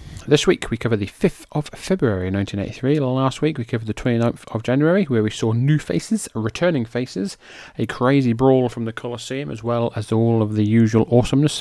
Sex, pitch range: male, 100-125 Hz